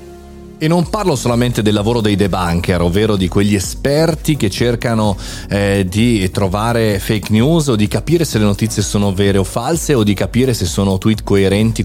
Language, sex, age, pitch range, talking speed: Italian, male, 30-49, 100-135 Hz, 180 wpm